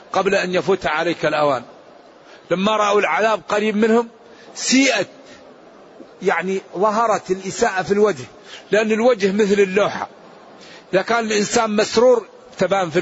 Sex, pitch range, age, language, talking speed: male, 180-220 Hz, 50-69, Arabic, 120 wpm